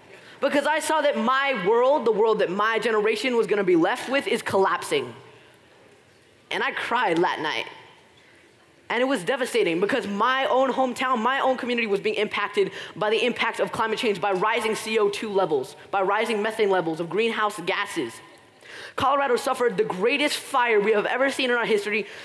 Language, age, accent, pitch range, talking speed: English, 20-39, American, 220-285 Hz, 180 wpm